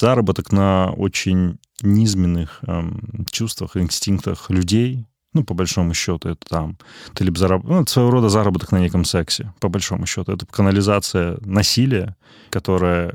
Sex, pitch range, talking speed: male, 90-110 Hz, 145 wpm